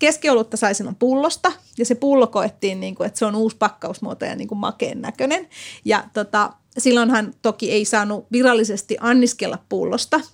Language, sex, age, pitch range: Finnish, female, 30-49, 210-245 Hz